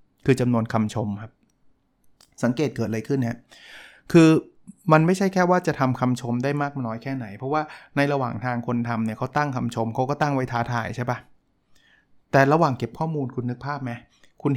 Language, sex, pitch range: Thai, male, 115-145 Hz